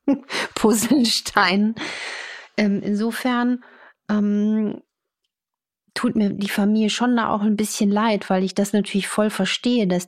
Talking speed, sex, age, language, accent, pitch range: 120 wpm, female, 40-59, German, German, 185-225 Hz